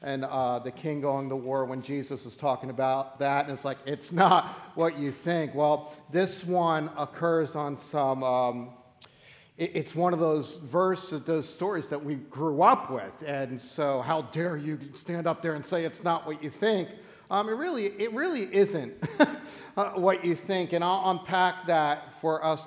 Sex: male